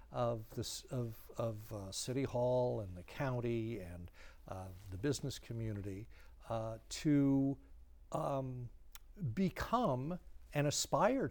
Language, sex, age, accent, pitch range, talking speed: English, male, 60-79, American, 105-135 Hz, 110 wpm